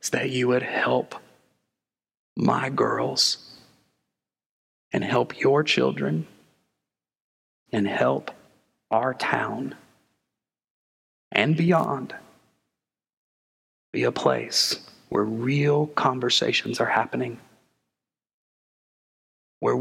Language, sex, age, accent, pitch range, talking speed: English, male, 40-59, American, 115-150 Hz, 80 wpm